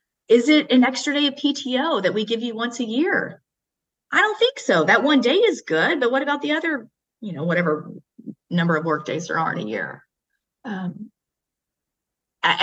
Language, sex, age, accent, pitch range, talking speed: English, female, 30-49, American, 195-275 Hz, 195 wpm